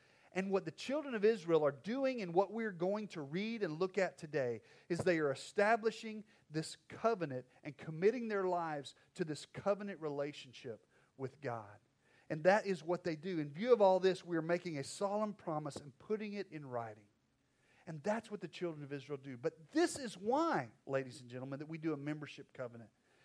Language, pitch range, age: English, 145-195 Hz, 40-59